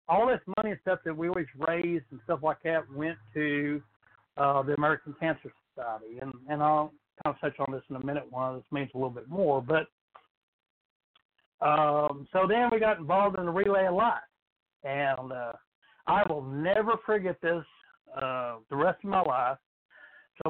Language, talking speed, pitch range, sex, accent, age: English, 185 wpm, 140-180 Hz, male, American, 60-79